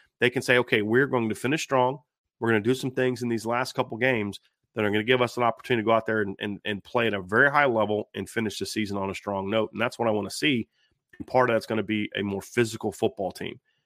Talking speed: 290 wpm